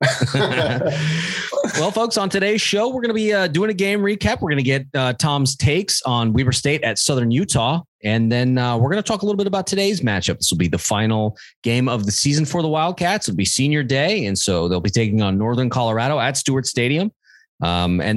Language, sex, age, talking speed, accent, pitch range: English, male, 30-49, 230 wpm, American, 110-155 Hz